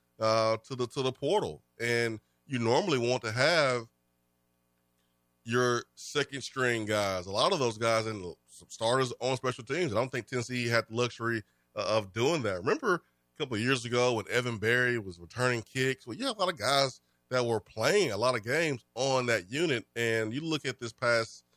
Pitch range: 95-130 Hz